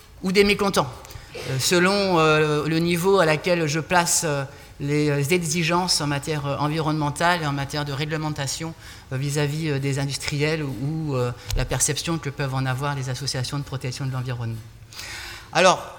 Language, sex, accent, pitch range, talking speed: French, male, French, 130-160 Hz, 140 wpm